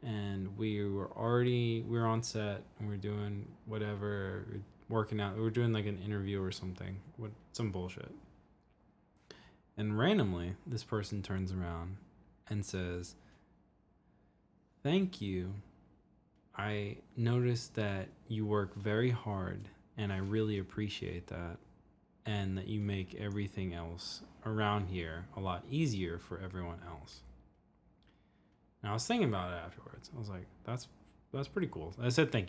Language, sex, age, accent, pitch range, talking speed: English, male, 20-39, American, 95-115 Hz, 140 wpm